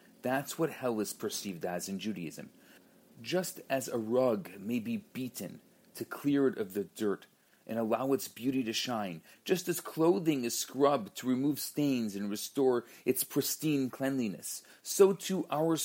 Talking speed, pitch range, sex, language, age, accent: 165 wpm, 125-170 Hz, male, English, 40-59, Canadian